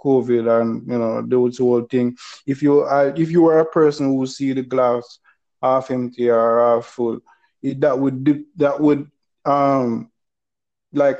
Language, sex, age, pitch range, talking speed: English, male, 20-39, 125-145 Hz, 170 wpm